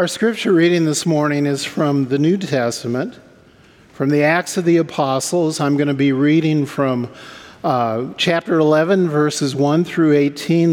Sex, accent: male, American